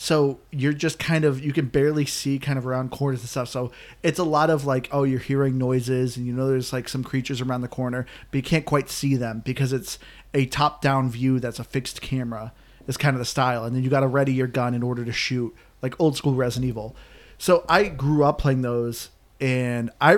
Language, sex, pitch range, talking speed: English, male, 125-155 Hz, 240 wpm